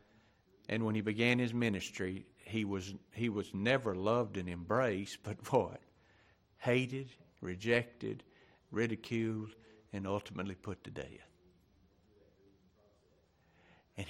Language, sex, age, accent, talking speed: English, male, 50-69, American, 105 wpm